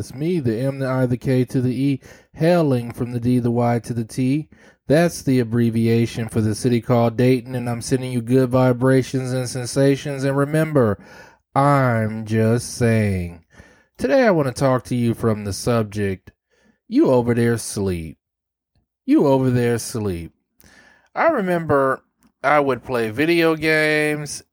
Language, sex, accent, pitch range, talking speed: English, male, American, 110-140 Hz, 160 wpm